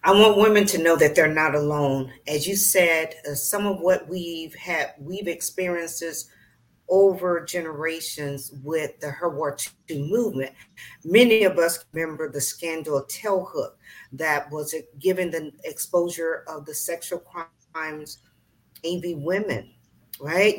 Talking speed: 140 wpm